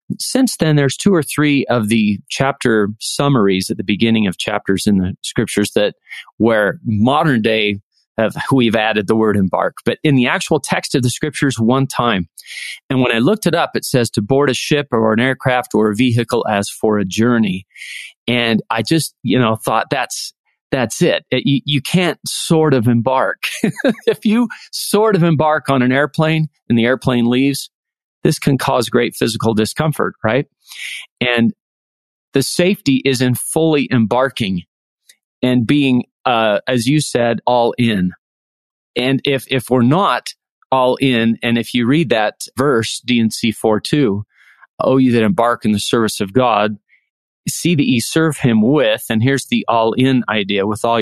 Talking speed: 175 wpm